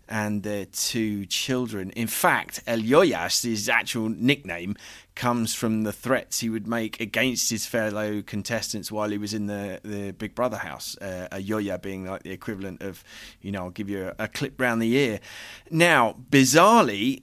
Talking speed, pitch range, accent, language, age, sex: 180 wpm, 105-125 Hz, British, English, 30-49, male